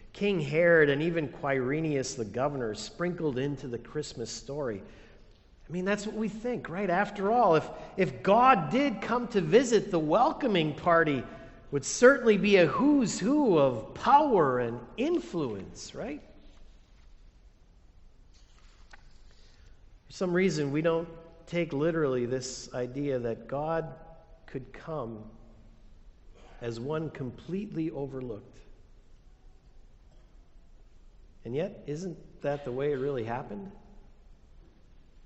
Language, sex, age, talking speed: English, male, 50-69, 115 wpm